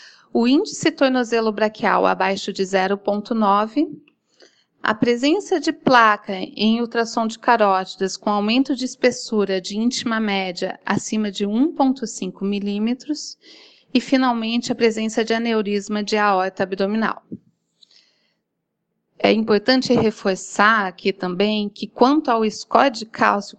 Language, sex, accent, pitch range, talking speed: Portuguese, female, Brazilian, 200-250 Hz, 115 wpm